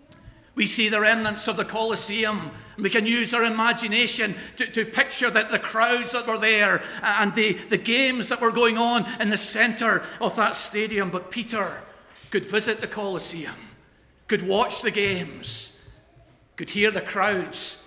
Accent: British